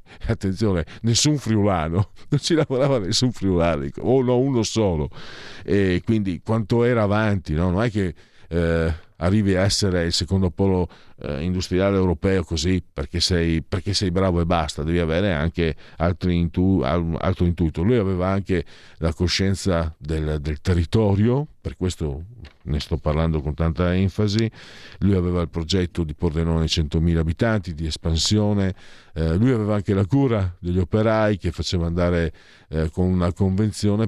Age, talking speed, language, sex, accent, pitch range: 50-69, 155 wpm, Italian, male, native, 80-100 Hz